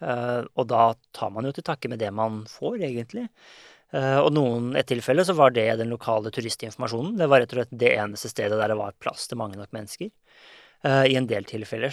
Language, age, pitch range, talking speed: English, 20-39, 115-140 Hz, 215 wpm